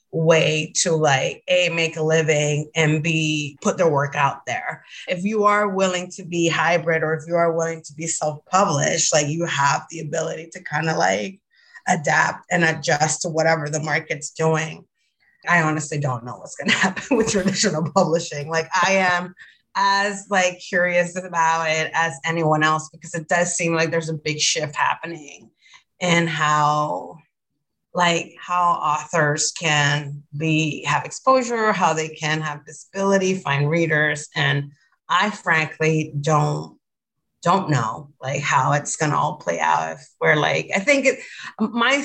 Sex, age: female, 30-49